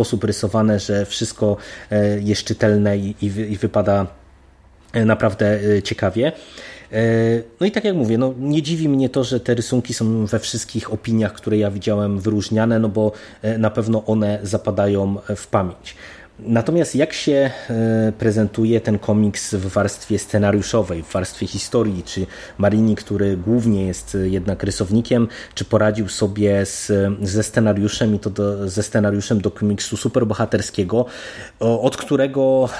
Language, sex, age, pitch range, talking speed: Polish, male, 30-49, 100-115 Hz, 135 wpm